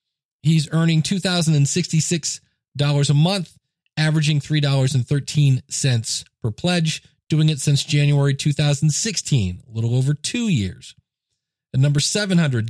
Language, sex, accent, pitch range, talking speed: English, male, American, 135-165 Hz, 105 wpm